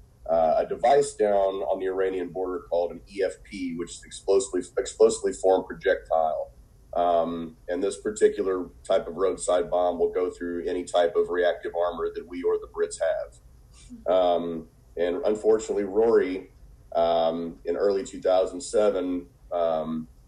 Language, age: English, 30-49